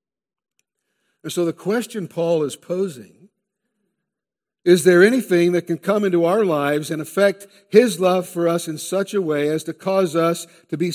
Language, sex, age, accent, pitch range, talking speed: English, male, 60-79, American, 160-200 Hz, 175 wpm